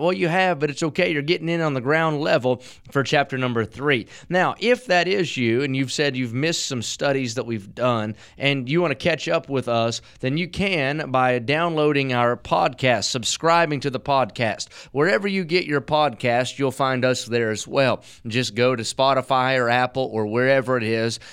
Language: English